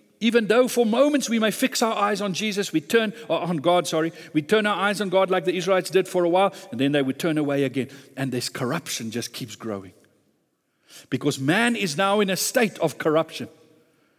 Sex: male